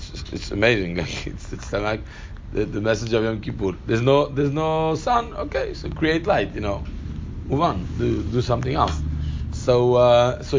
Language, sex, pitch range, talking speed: English, male, 100-145 Hz, 175 wpm